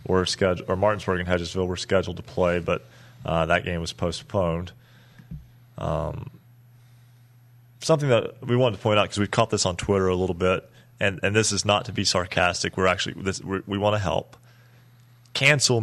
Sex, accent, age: male, American, 30-49